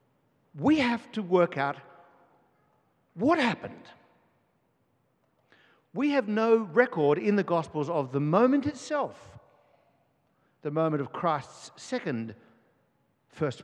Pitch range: 130-180 Hz